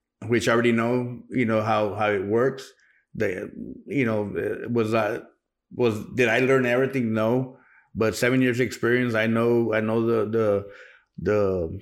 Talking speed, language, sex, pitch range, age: 160 wpm, English, male, 110-125 Hz, 30-49